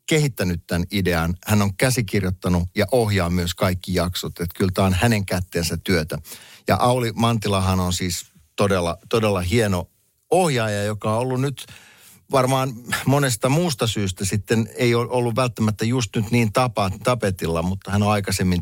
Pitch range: 90-115 Hz